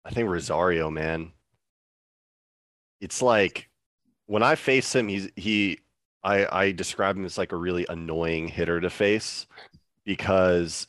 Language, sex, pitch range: English, male, 85-100 Hz